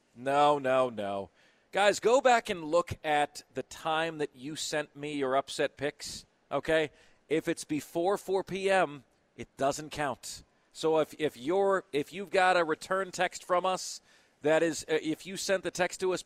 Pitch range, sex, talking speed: 145-180 Hz, male, 180 wpm